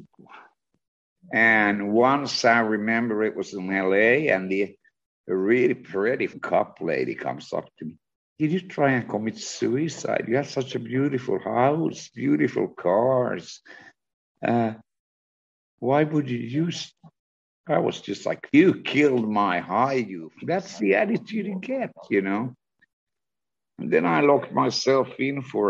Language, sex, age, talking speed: English, male, 60-79, 140 wpm